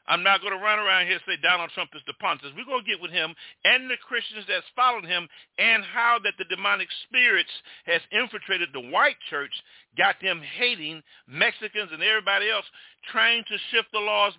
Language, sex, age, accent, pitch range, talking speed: English, male, 50-69, American, 180-250 Hz, 205 wpm